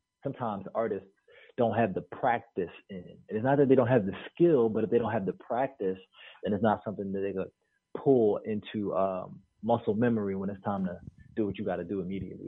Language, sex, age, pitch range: English, male, 30-49, 100-120 Hz